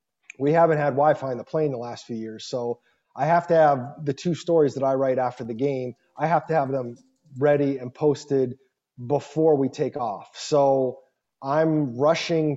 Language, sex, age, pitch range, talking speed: English, male, 30-49, 130-155 Hz, 190 wpm